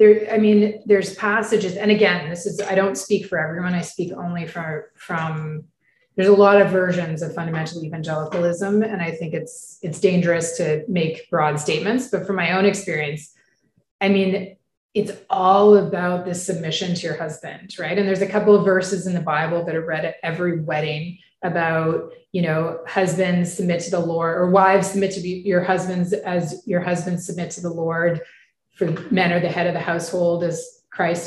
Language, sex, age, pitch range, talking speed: English, female, 30-49, 175-210 Hz, 190 wpm